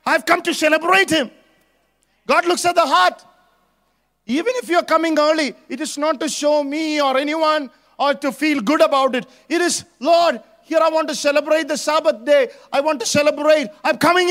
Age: 50-69